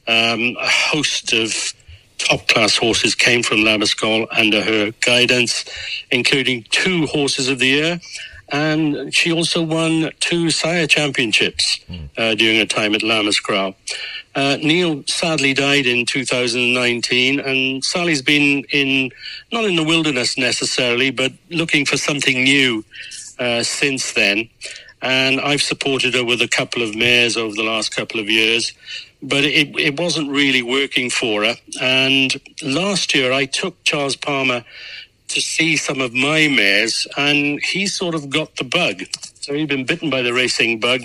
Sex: male